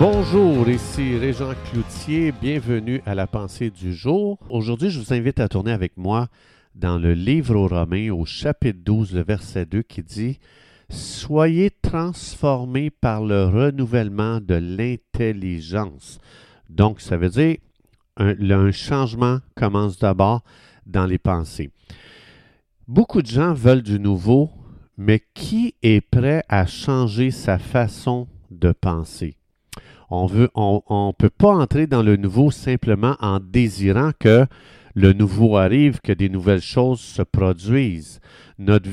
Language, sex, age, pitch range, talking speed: French, male, 50-69, 100-130 Hz, 135 wpm